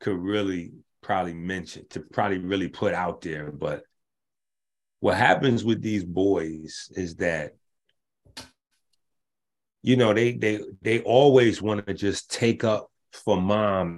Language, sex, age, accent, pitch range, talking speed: English, male, 30-49, American, 95-120 Hz, 135 wpm